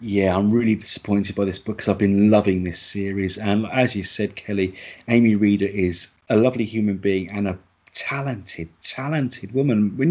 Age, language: 30-49, English